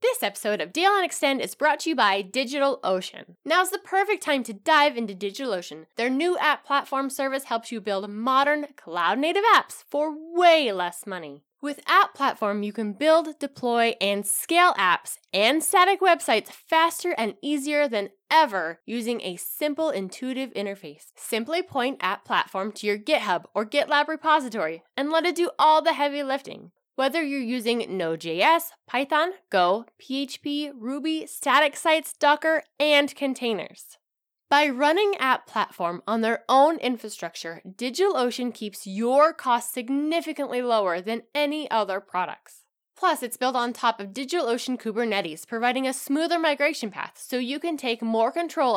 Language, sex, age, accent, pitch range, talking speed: English, female, 10-29, American, 210-305 Hz, 155 wpm